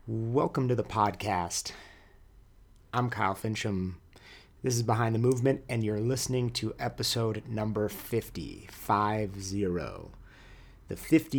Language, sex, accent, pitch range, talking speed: English, male, American, 95-110 Hz, 100 wpm